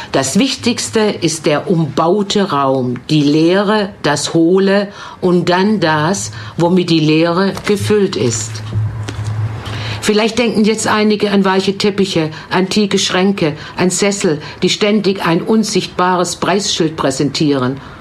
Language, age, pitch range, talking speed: German, 50-69, 145-205 Hz, 115 wpm